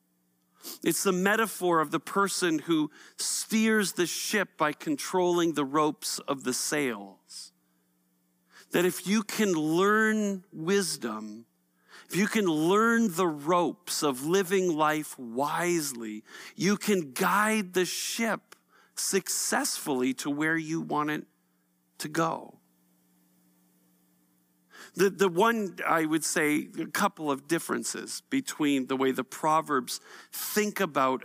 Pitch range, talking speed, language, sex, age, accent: 130-180 Hz, 120 wpm, English, male, 50-69, American